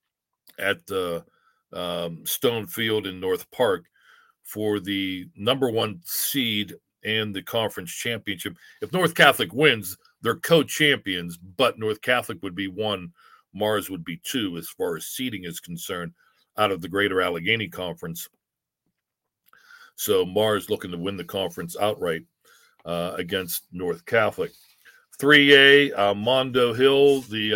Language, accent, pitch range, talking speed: English, American, 100-130 Hz, 135 wpm